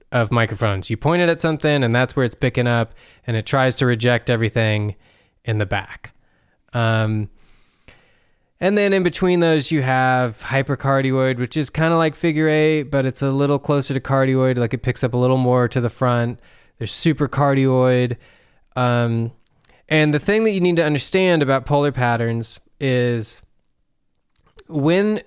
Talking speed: 170 wpm